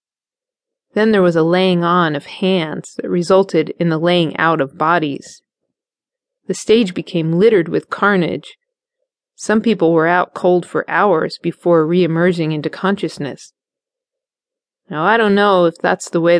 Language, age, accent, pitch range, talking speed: English, 30-49, American, 165-220 Hz, 150 wpm